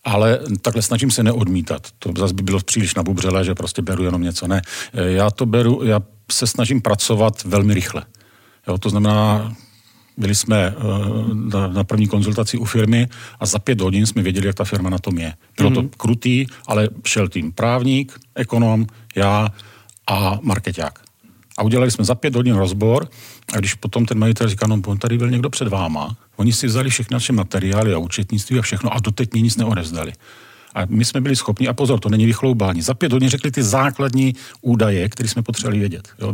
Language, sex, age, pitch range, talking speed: Czech, male, 40-59, 100-120 Hz, 190 wpm